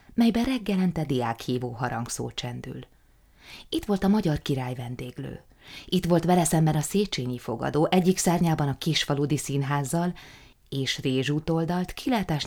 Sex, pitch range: female, 125-165 Hz